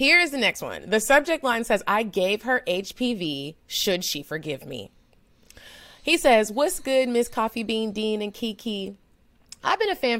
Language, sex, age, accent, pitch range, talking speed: English, female, 30-49, American, 160-230 Hz, 185 wpm